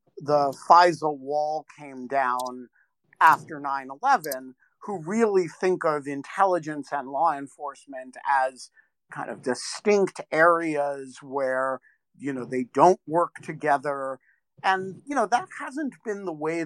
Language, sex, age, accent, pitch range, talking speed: English, male, 50-69, American, 135-175 Hz, 125 wpm